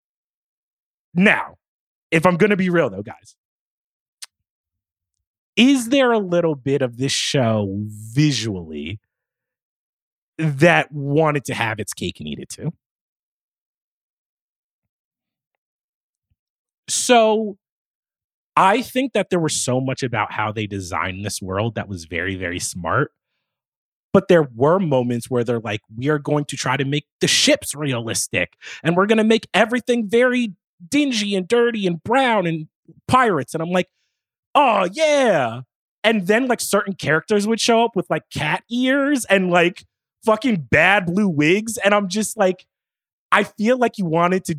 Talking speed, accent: 150 wpm, American